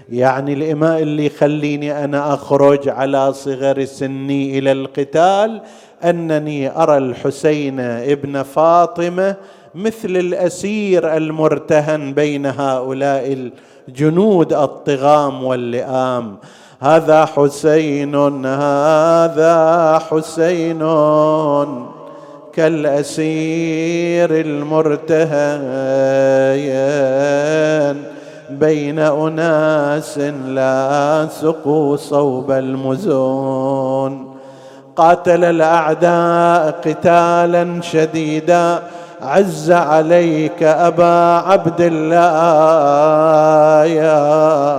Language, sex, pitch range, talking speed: Arabic, male, 140-170 Hz, 60 wpm